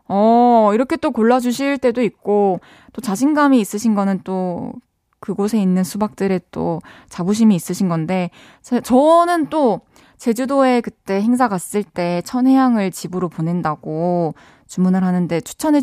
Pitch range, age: 175-255 Hz, 20-39